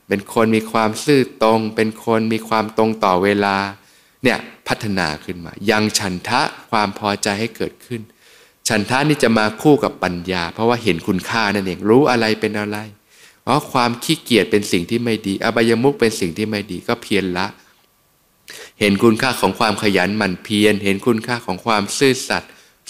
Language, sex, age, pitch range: Thai, male, 20-39, 100-115 Hz